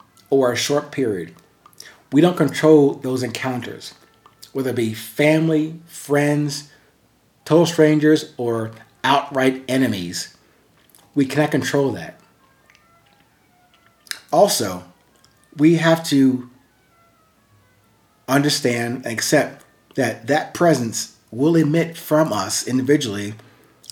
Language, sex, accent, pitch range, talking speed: English, male, American, 115-150 Hz, 95 wpm